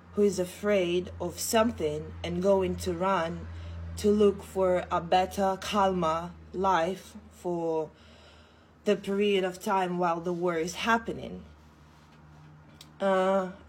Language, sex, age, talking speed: English, female, 20-39, 120 wpm